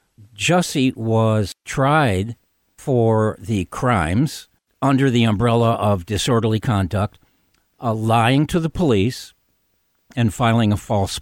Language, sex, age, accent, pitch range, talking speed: English, male, 60-79, American, 110-155 Hz, 110 wpm